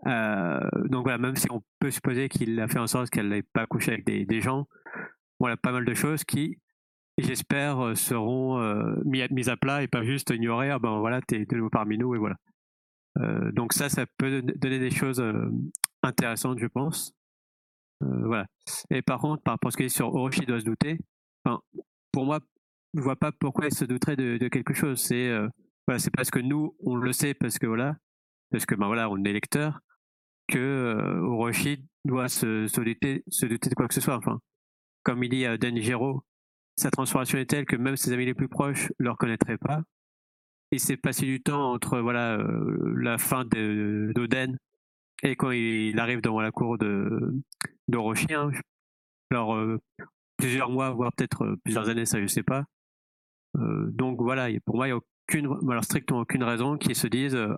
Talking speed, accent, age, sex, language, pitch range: 205 wpm, French, 40-59, male, French, 115-135 Hz